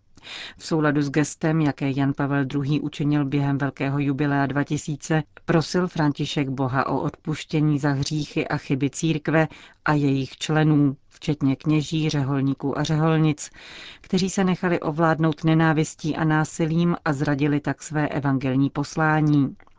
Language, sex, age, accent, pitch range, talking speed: Czech, female, 40-59, native, 140-155 Hz, 135 wpm